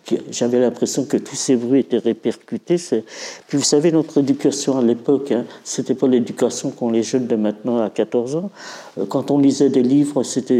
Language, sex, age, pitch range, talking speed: French, male, 50-69, 115-140 Hz, 190 wpm